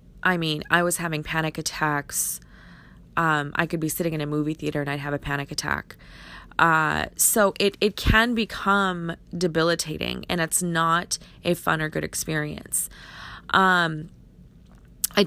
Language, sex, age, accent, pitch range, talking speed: English, female, 20-39, American, 155-185 Hz, 155 wpm